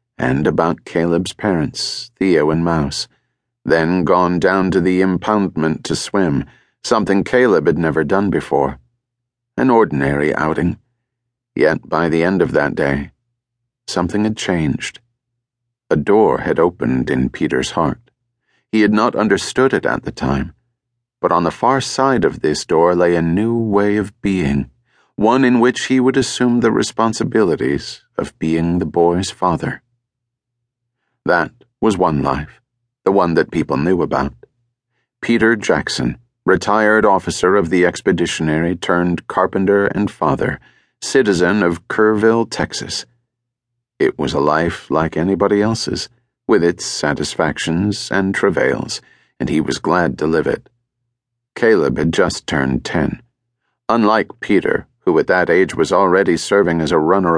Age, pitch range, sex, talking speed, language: 40-59, 85-120 Hz, male, 145 wpm, English